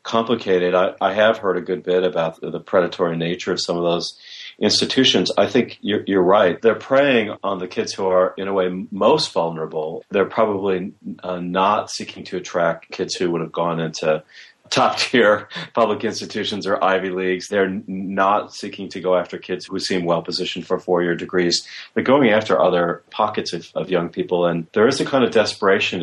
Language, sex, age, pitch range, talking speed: English, male, 40-59, 90-110 Hz, 190 wpm